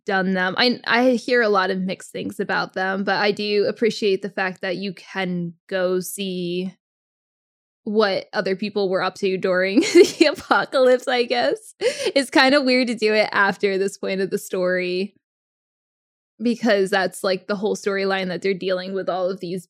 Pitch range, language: 190-230 Hz, English